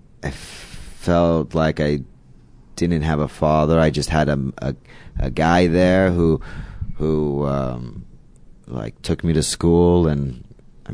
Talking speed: 145 wpm